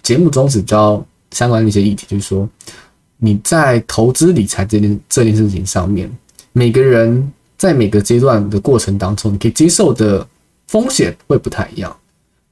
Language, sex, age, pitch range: Chinese, male, 20-39, 105-140 Hz